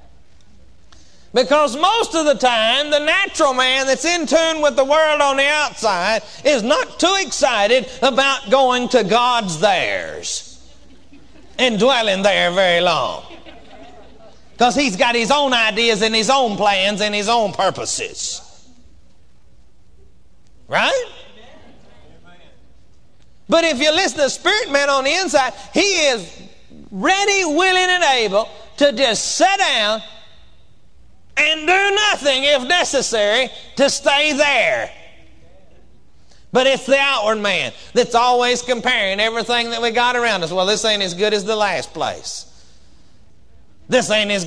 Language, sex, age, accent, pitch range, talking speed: English, male, 40-59, American, 215-280 Hz, 135 wpm